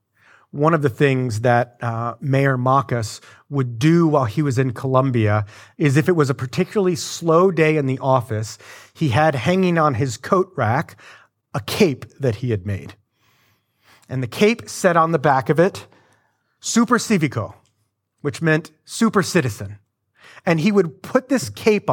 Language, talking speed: English, 165 wpm